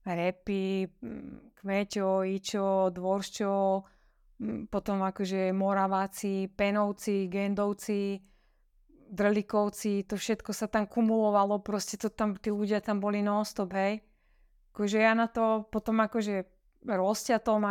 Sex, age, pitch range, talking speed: female, 20-39, 195-220 Hz, 105 wpm